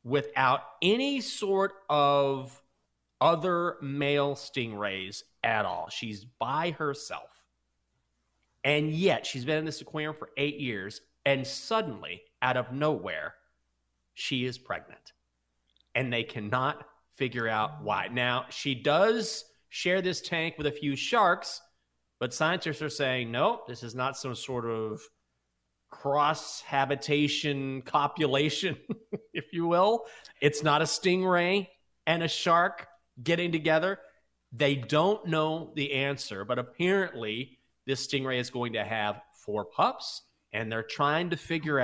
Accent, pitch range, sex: American, 110-155 Hz, male